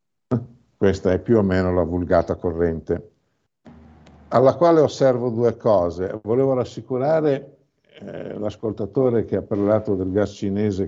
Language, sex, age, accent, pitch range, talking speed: Italian, male, 50-69, native, 105-145 Hz, 125 wpm